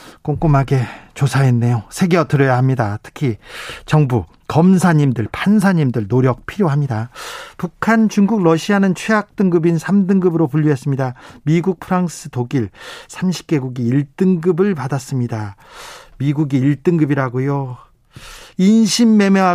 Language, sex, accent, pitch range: Korean, male, native, 135-190 Hz